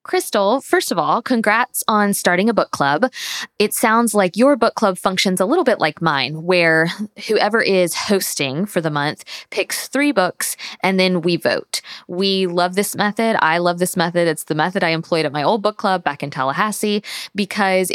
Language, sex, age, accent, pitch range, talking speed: English, female, 20-39, American, 170-220 Hz, 195 wpm